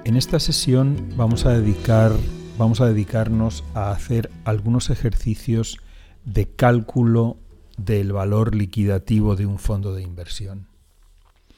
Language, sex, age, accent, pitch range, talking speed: Spanish, male, 40-59, Spanish, 100-125 Hz, 110 wpm